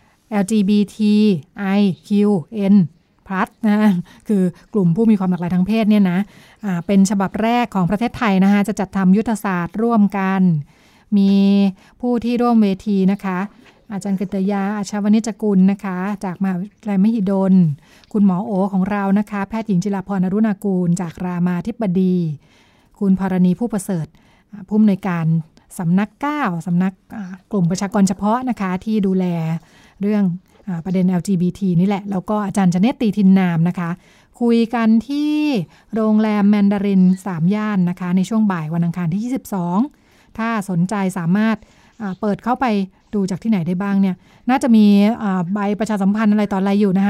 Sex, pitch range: female, 185-210 Hz